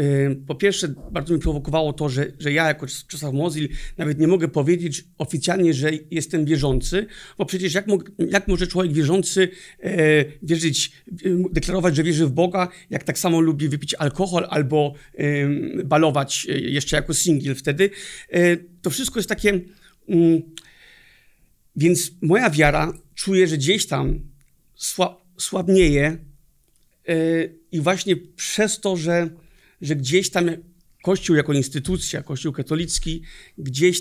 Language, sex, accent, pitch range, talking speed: Polish, male, native, 145-180 Hz, 125 wpm